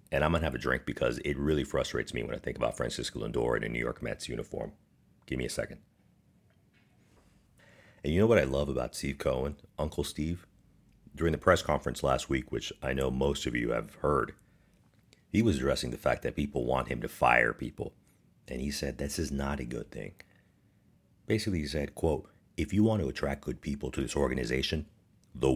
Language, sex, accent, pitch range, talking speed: English, male, American, 65-85 Hz, 210 wpm